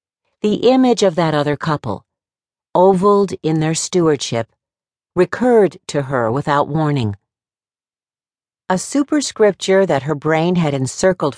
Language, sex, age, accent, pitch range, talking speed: English, female, 50-69, American, 125-195 Hz, 115 wpm